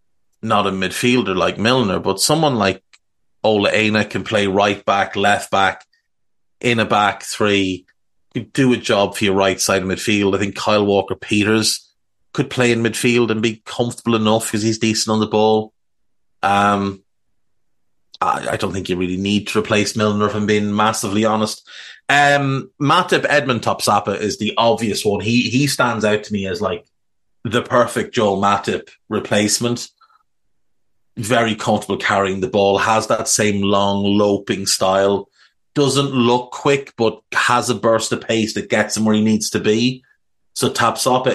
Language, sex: English, male